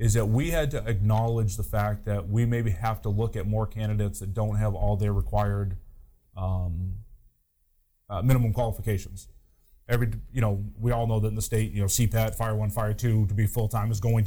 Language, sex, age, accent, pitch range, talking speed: English, male, 20-39, American, 100-115 Hz, 205 wpm